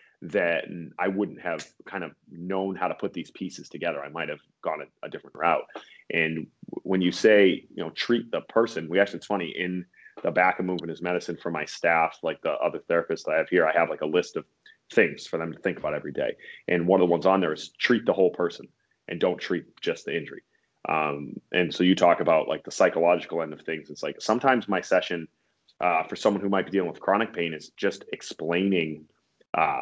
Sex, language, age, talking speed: male, English, 30-49, 230 wpm